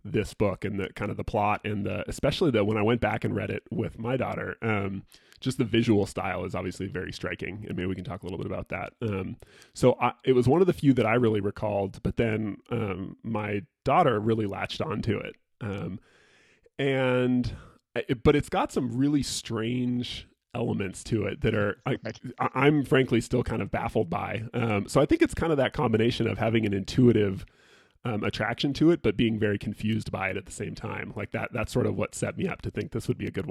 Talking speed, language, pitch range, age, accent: 235 wpm, English, 100-125 Hz, 20-39, American